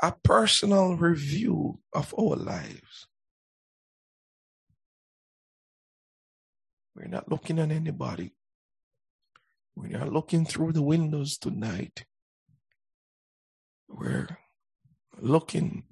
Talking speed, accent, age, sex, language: 75 wpm, American, 60-79, male, English